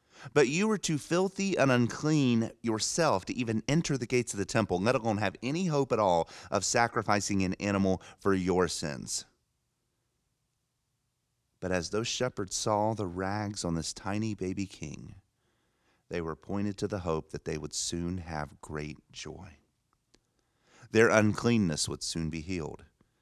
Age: 30-49